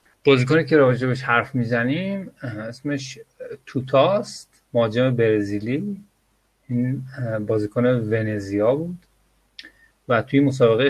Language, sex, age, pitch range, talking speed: Persian, male, 30-49, 110-140 Hz, 90 wpm